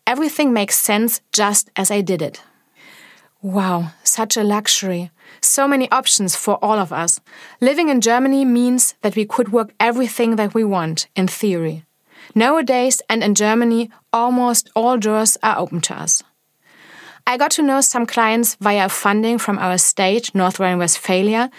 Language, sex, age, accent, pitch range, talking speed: English, female, 30-49, German, 205-275 Hz, 160 wpm